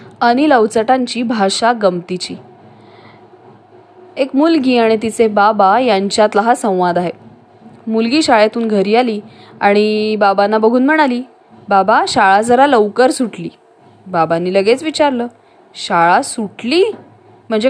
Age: 20-39